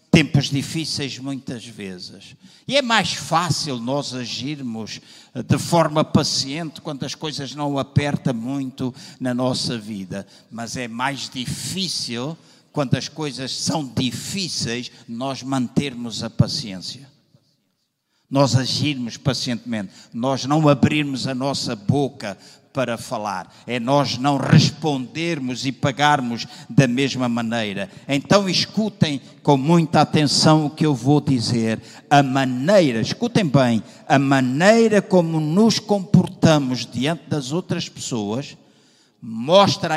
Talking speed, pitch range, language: 120 wpm, 125-155 Hz, Portuguese